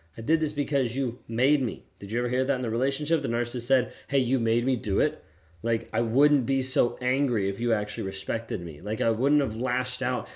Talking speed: 240 wpm